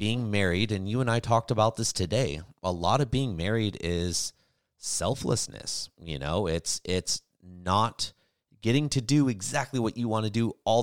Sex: male